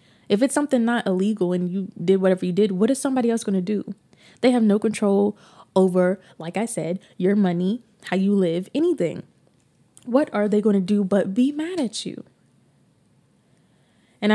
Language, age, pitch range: English, 20-39, 180-215 Hz